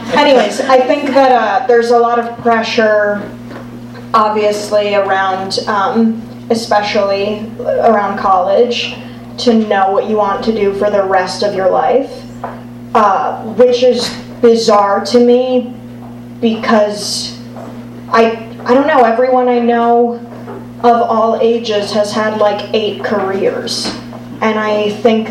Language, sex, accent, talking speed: English, female, American, 130 wpm